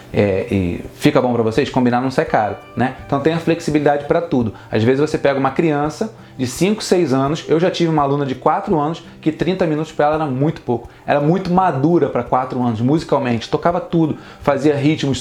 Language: Portuguese